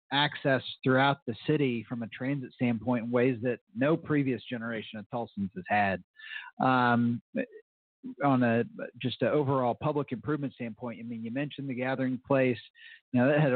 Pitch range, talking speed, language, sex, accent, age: 125-150 Hz, 170 wpm, English, male, American, 40-59